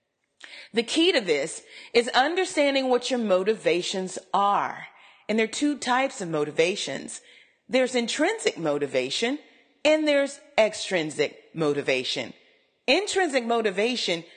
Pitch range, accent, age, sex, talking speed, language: 190-275 Hz, American, 30-49, female, 110 wpm, English